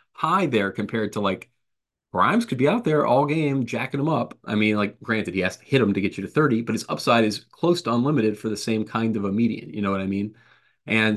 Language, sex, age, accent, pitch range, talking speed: English, male, 30-49, American, 100-130 Hz, 265 wpm